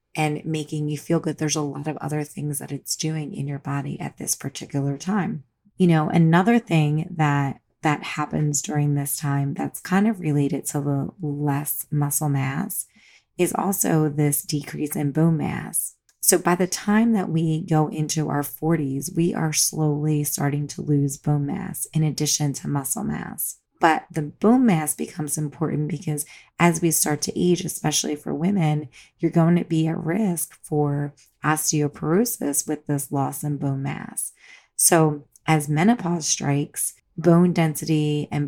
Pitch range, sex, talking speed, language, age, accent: 145-165 Hz, female, 165 wpm, English, 30-49, American